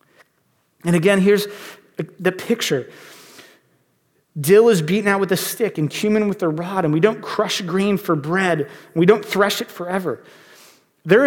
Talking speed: 165 wpm